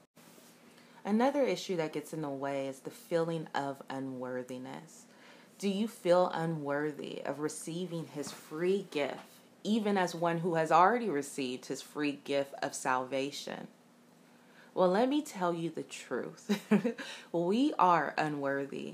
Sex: female